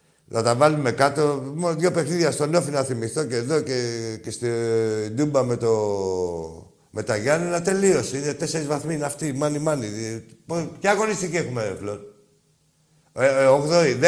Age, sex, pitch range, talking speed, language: 60-79, male, 120-160 Hz, 150 wpm, Greek